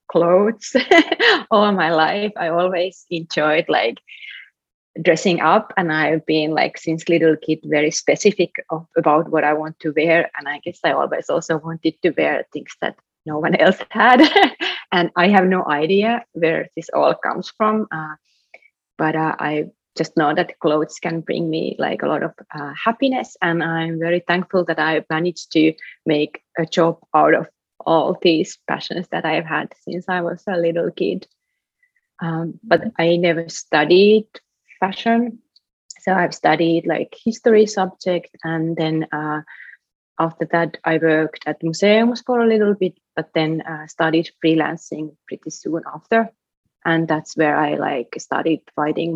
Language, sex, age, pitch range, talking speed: English, female, 30-49, 160-190 Hz, 160 wpm